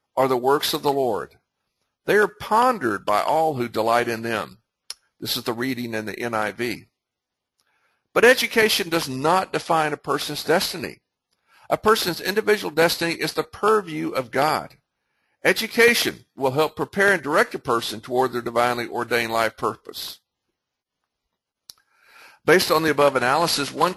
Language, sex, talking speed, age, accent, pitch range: English, male, 150 wpm, 60-79, American, 130-185 Hz